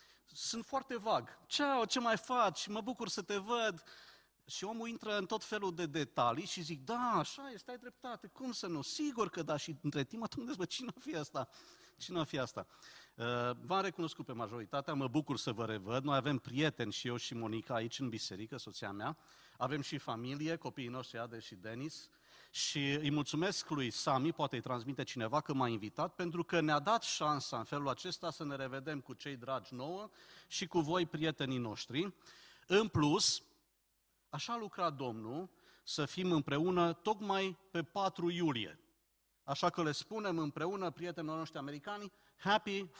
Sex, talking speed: male, 180 wpm